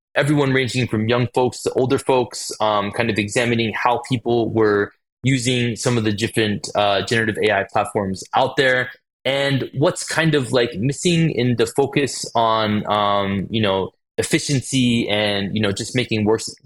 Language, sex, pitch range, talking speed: English, male, 100-125 Hz, 165 wpm